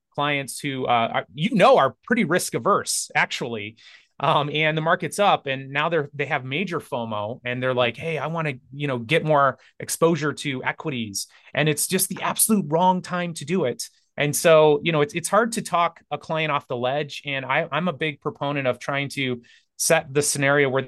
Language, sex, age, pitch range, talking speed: English, male, 30-49, 130-160 Hz, 215 wpm